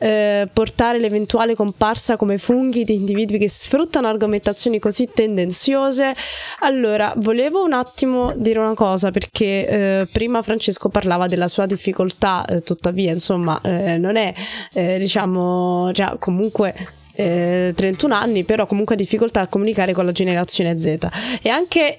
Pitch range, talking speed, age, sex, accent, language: 185-230 Hz, 140 wpm, 20-39, female, native, Italian